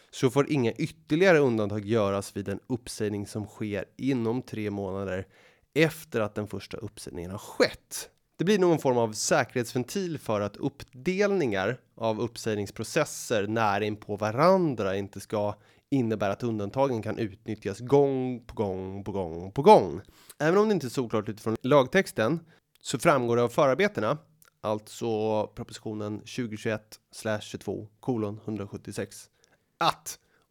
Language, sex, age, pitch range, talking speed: Swedish, male, 30-49, 100-130 Hz, 130 wpm